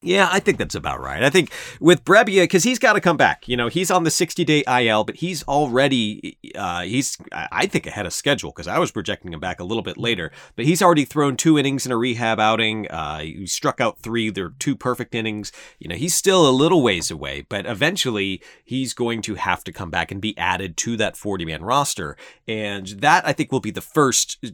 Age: 30-49